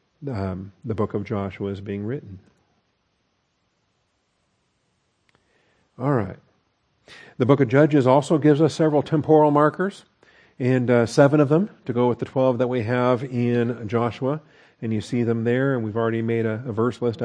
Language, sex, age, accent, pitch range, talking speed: English, male, 40-59, American, 115-145 Hz, 165 wpm